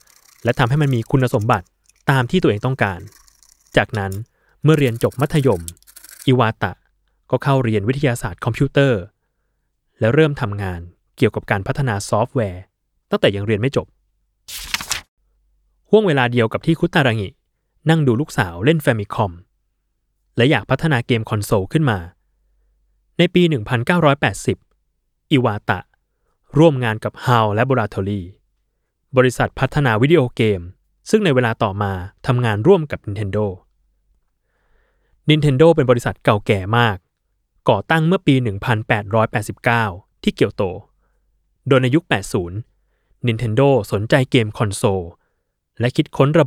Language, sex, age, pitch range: Thai, male, 20-39, 105-140 Hz